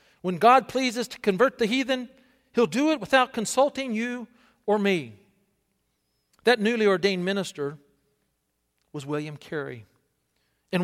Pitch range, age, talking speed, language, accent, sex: 170-235 Hz, 40-59, 125 wpm, English, American, male